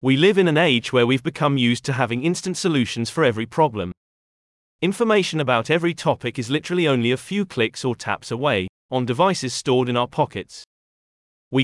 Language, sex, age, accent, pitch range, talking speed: English, male, 30-49, British, 120-165 Hz, 185 wpm